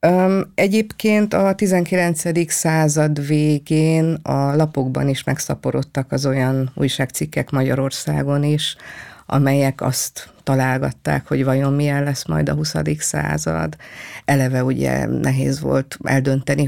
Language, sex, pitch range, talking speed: Hungarian, female, 130-150 Hz, 110 wpm